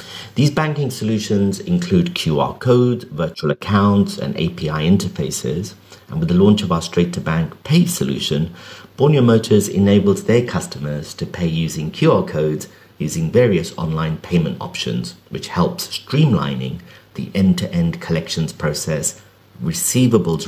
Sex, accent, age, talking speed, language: male, British, 50-69, 130 wpm, English